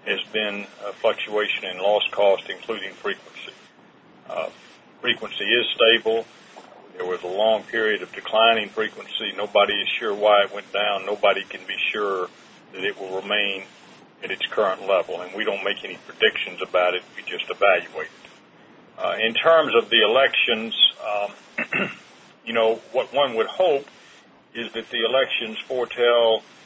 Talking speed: 160 wpm